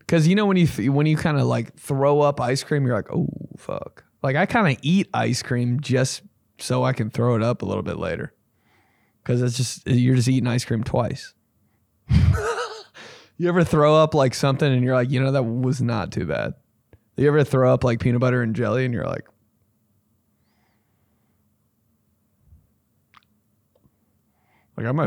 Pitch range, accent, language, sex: 110-145 Hz, American, English, male